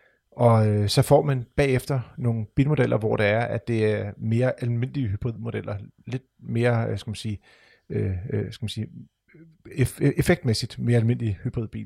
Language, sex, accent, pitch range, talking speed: Danish, male, native, 110-135 Hz, 140 wpm